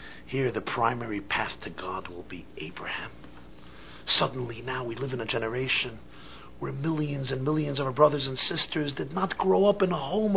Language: English